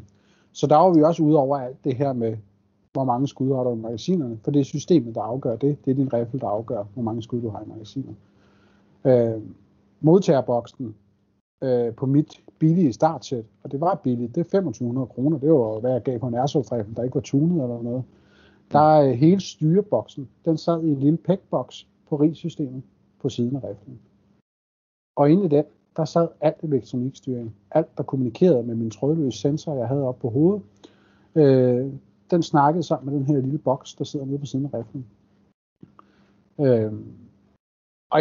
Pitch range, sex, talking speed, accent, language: 115-150 Hz, male, 190 wpm, native, Danish